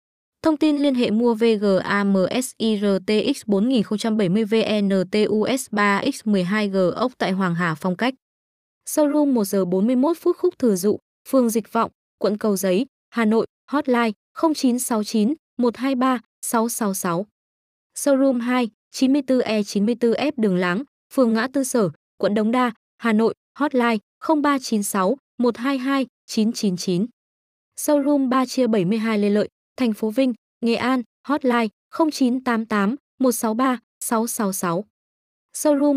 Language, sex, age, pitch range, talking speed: Vietnamese, female, 20-39, 205-260 Hz, 90 wpm